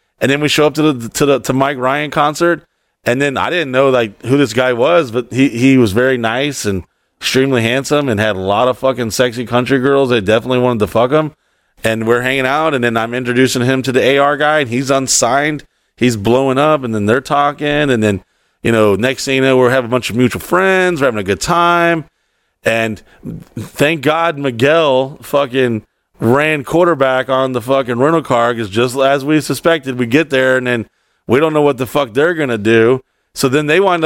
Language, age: English, 30-49